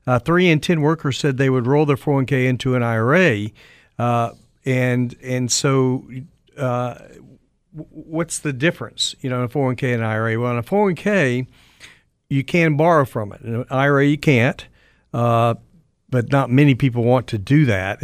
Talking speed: 180 wpm